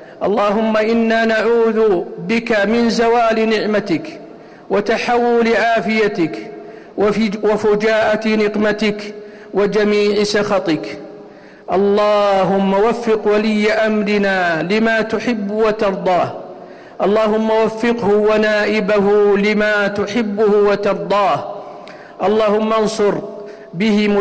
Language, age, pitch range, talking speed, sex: Arabic, 50-69, 200-215 Hz, 70 wpm, male